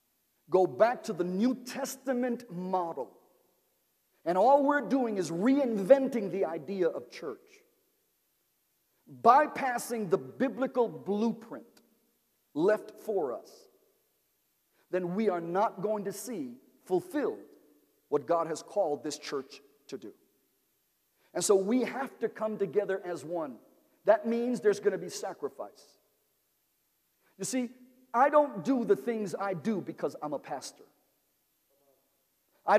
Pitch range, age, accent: 195-280 Hz, 50-69, American